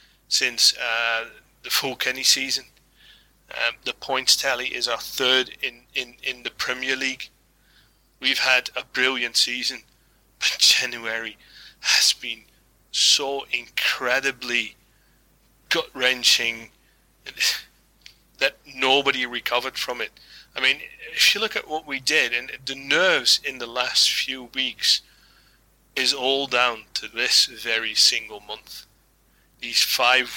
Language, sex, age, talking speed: English, male, 30-49, 120 wpm